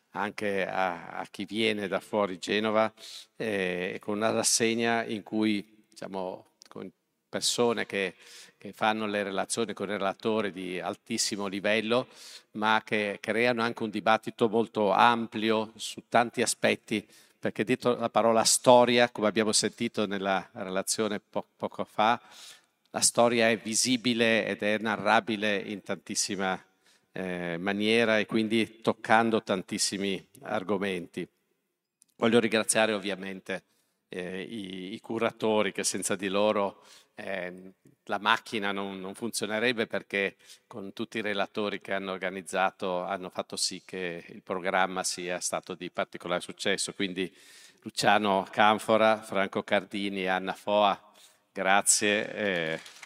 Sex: male